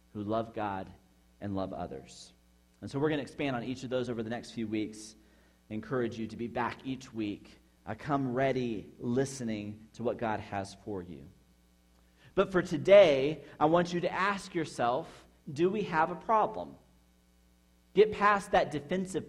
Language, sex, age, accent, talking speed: English, male, 40-59, American, 170 wpm